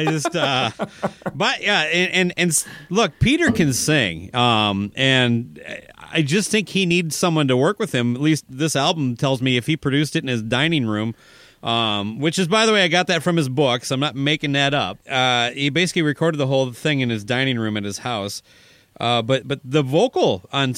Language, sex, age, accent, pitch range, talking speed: English, male, 30-49, American, 125-170 Hz, 220 wpm